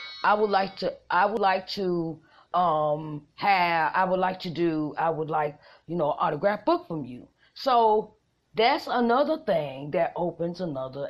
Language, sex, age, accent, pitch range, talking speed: English, female, 40-59, American, 150-200 Hz, 170 wpm